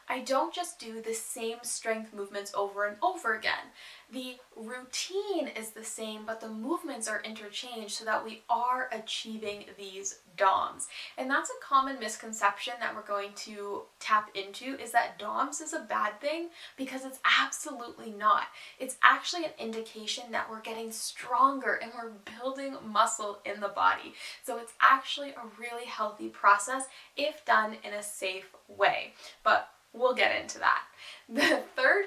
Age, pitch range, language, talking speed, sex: 10-29, 215-265 Hz, English, 160 wpm, female